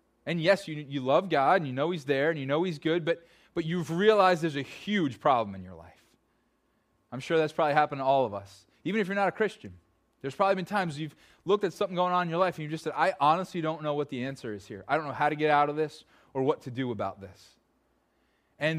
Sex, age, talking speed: male, 20-39, 270 wpm